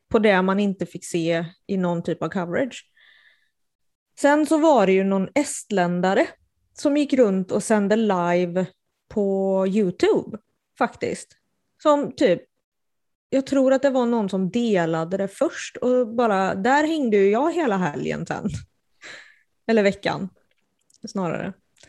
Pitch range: 190-250 Hz